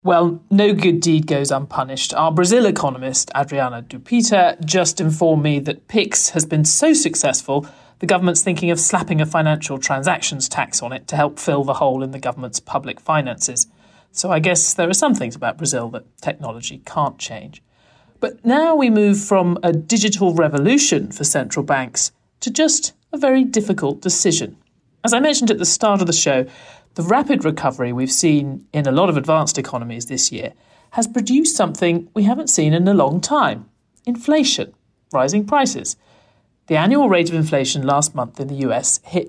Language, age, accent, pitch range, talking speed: English, 40-59, British, 140-225 Hz, 180 wpm